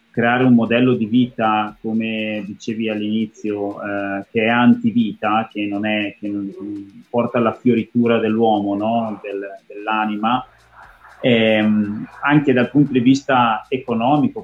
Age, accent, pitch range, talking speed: 30-49, native, 110-130 Hz, 105 wpm